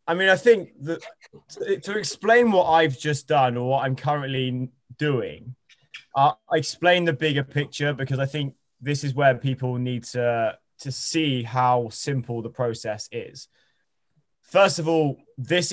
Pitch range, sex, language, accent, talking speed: 125-150 Hz, male, English, British, 160 wpm